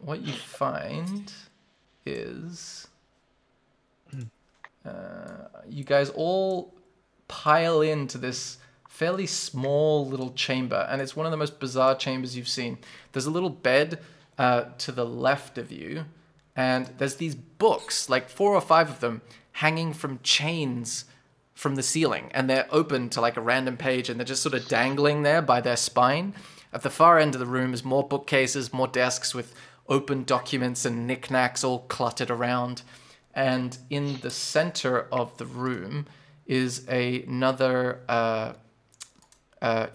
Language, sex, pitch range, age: English, male, 125-155 Hz, 20-39